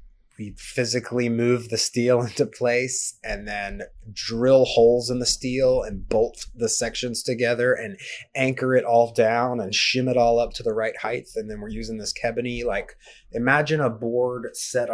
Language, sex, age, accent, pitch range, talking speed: English, male, 30-49, American, 115-130 Hz, 175 wpm